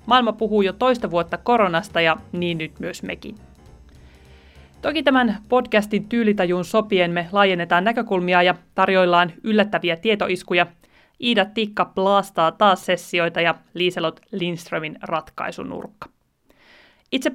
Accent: native